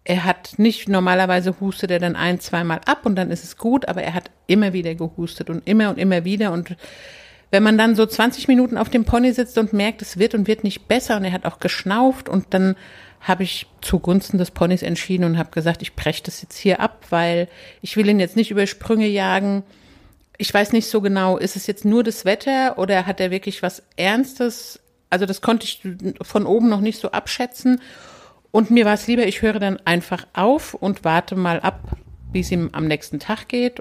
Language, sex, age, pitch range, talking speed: German, female, 50-69, 180-220 Hz, 220 wpm